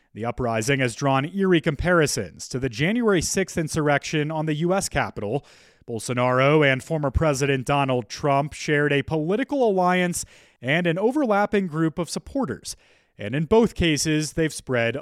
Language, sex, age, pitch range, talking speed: English, male, 30-49, 130-180 Hz, 150 wpm